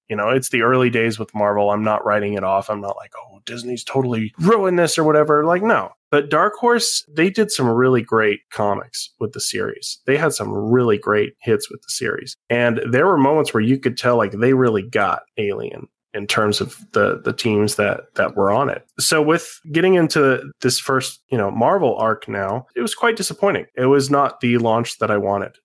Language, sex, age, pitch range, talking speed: English, male, 20-39, 105-130 Hz, 220 wpm